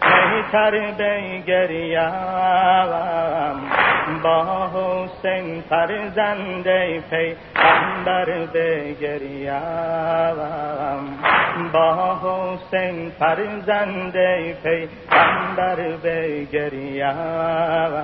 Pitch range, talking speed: 165-205 Hz, 55 wpm